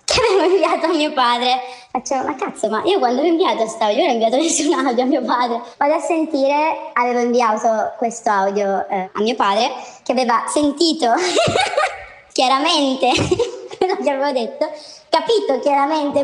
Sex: male